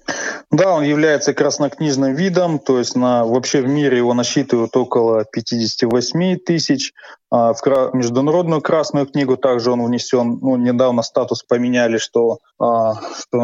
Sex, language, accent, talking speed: male, Russian, native, 135 wpm